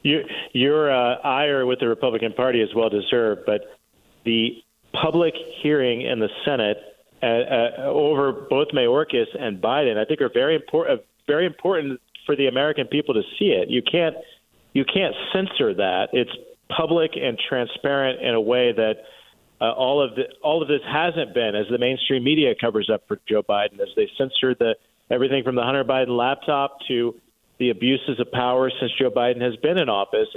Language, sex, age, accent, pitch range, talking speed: English, male, 40-59, American, 120-155 Hz, 185 wpm